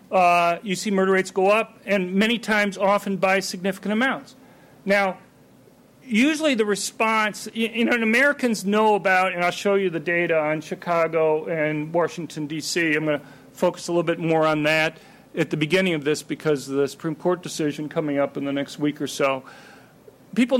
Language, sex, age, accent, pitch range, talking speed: English, male, 40-59, American, 165-205 Hz, 190 wpm